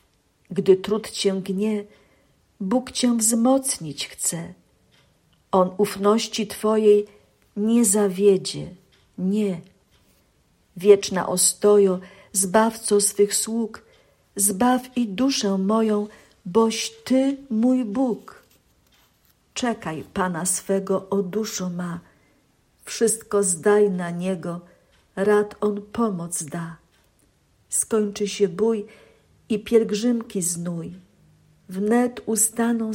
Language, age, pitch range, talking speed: Polish, 50-69, 185-225 Hz, 90 wpm